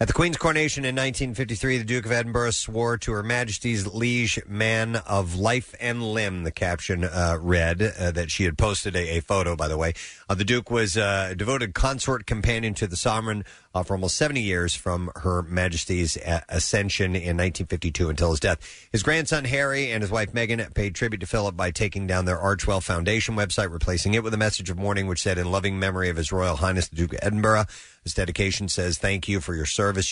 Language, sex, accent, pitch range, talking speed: English, male, American, 90-110 Hz, 215 wpm